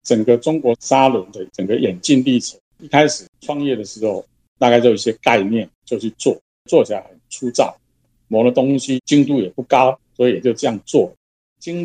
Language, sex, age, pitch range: Chinese, male, 50-69, 100-135 Hz